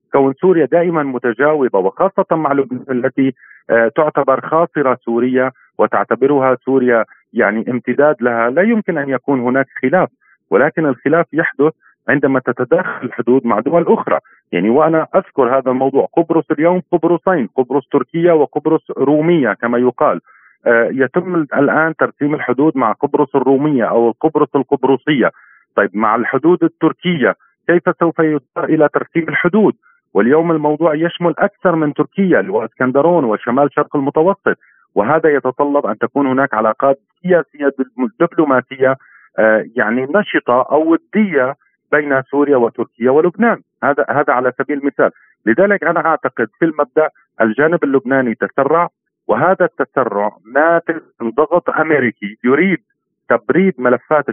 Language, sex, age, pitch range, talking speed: Arabic, male, 40-59, 130-165 Hz, 125 wpm